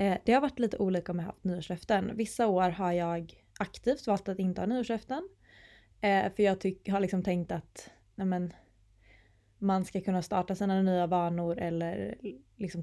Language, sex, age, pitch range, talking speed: Swedish, female, 20-39, 175-205 Hz, 170 wpm